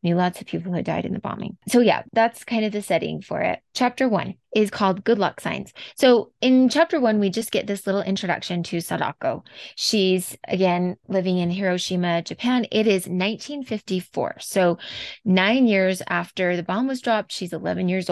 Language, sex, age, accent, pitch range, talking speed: English, female, 20-39, American, 180-220 Hz, 185 wpm